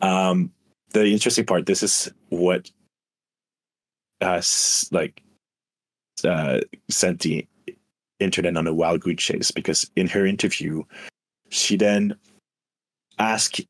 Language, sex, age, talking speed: English, male, 30-49, 105 wpm